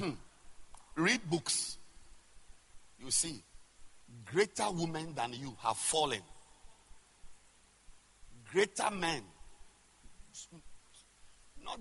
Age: 50-69